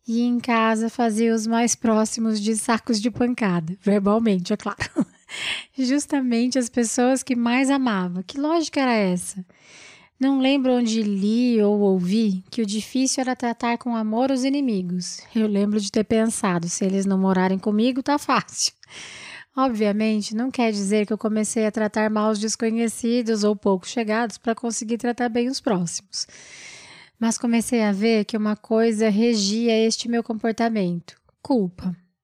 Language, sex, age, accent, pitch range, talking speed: Portuguese, female, 20-39, Brazilian, 200-235 Hz, 155 wpm